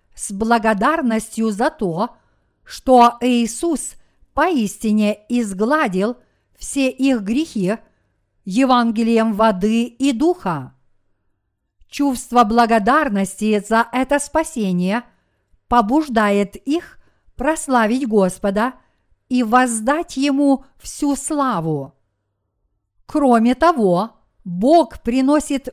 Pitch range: 200-275 Hz